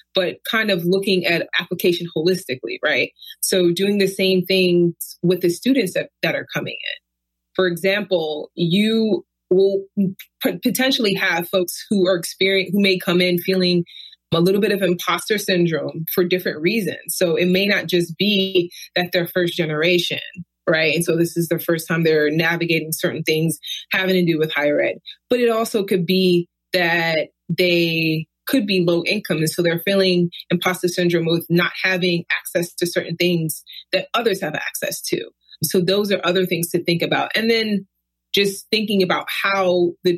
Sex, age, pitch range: female, 20-39, 165-190 Hz